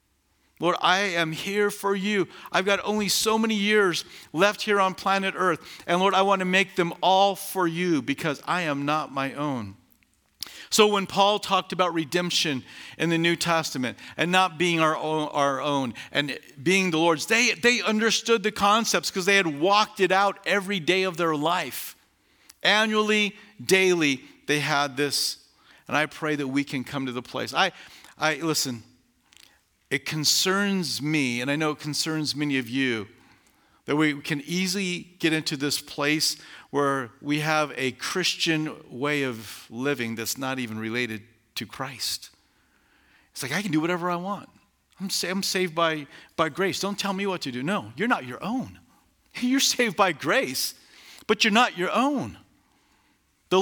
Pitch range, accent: 145-195 Hz, American